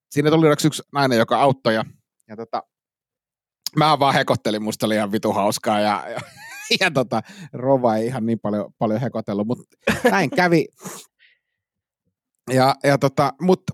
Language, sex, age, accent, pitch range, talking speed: Finnish, male, 30-49, native, 110-140 Hz, 155 wpm